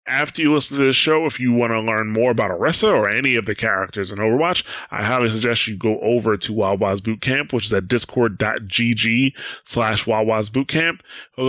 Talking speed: 200 wpm